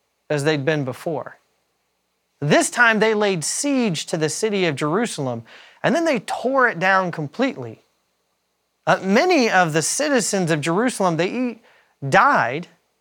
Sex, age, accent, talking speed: male, 30-49, American, 140 wpm